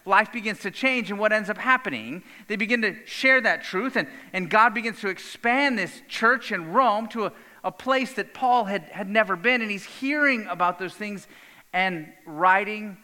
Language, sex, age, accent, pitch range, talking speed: English, male, 40-59, American, 185-250 Hz, 200 wpm